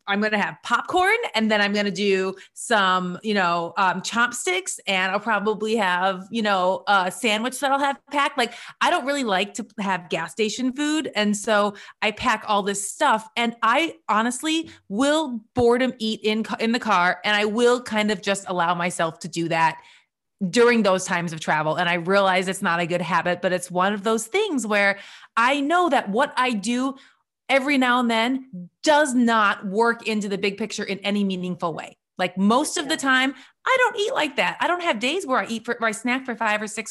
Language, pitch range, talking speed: English, 195-255 Hz, 215 wpm